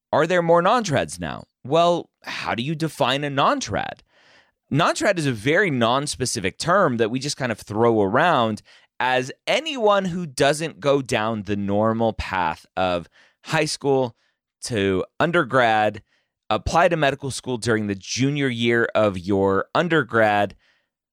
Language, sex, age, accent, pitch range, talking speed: English, male, 30-49, American, 105-140 Hz, 140 wpm